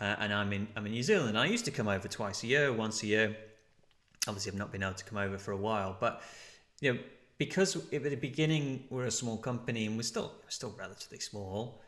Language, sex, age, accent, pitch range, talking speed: English, male, 30-49, British, 100-120 Hz, 250 wpm